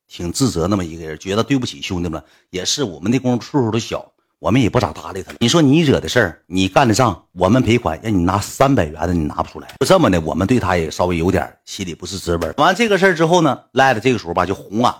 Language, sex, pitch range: Chinese, male, 90-120 Hz